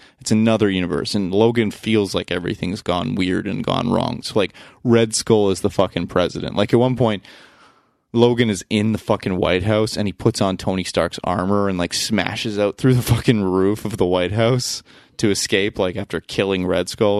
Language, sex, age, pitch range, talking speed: English, male, 20-39, 95-115 Hz, 200 wpm